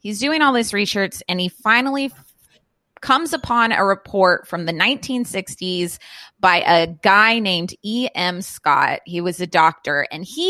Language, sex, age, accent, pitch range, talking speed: English, female, 20-39, American, 180-220 Hz, 155 wpm